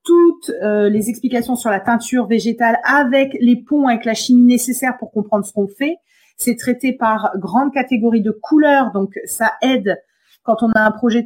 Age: 30-49